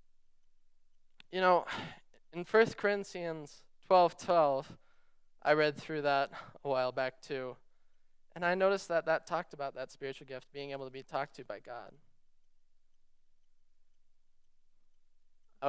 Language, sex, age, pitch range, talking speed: English, male, 20-39, 140-170 Hz, 135 wpm